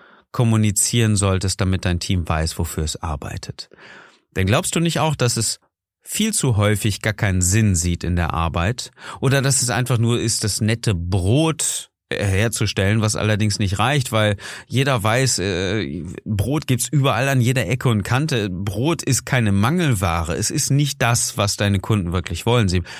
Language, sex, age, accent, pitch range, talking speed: German, male, 30-49, German, 95-120 Hz, 170 wpm